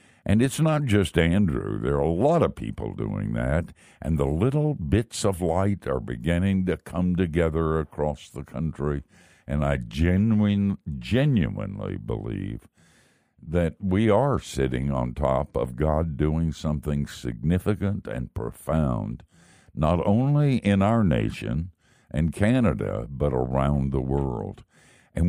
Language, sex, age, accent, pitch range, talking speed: English, male, 60-79, American, 75-100 Hz, 135 wpm